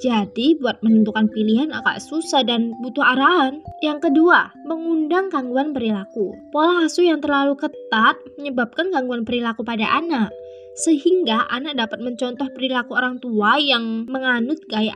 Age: 20-39